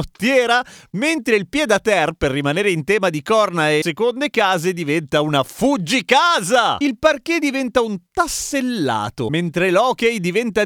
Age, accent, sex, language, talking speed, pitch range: 40-59, native, male, Italian, 130 wpm, 155-230 Hz